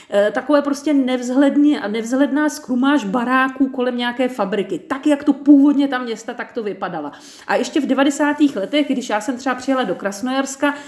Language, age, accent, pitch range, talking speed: Czech, 40-59, native, 235-285 Hz, 165 wpm